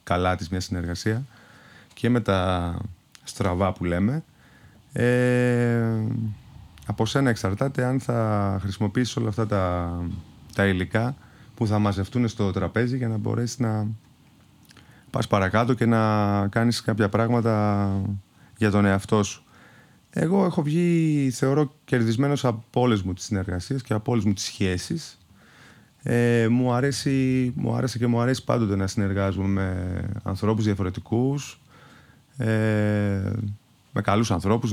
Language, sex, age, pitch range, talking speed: Greek, male, 30-49, 100-125 Hz, 130 wpm